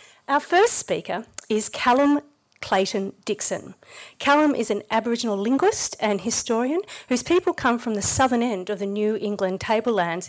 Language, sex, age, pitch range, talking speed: English, female, 40-59, 205-245 Hz, 150 wpm